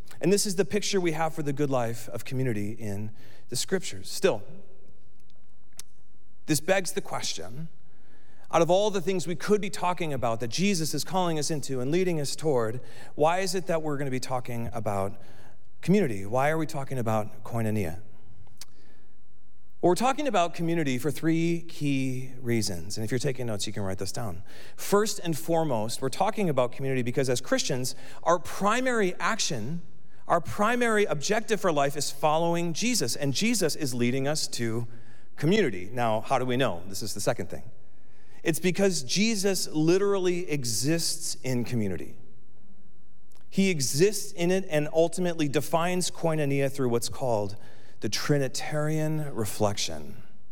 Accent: American